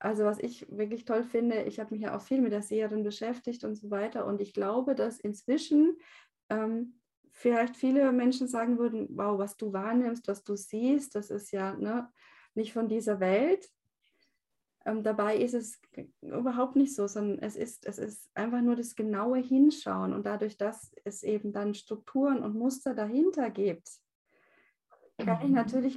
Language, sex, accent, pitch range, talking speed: German, female, German, 205-245 Hz, 170 wpm